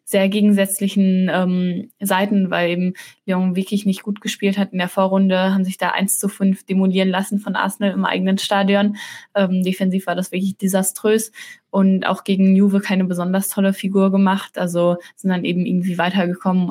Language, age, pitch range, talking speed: German, 20-39, 180-195 Hz, 175 wpm